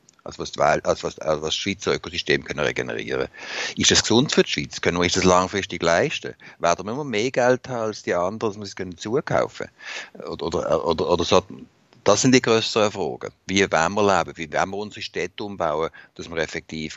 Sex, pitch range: male, 85-110 Hz